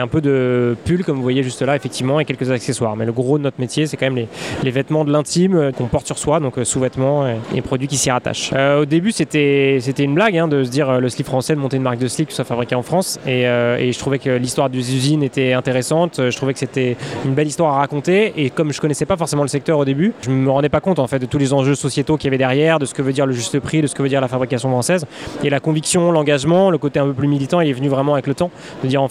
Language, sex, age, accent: French, male, 20-39, French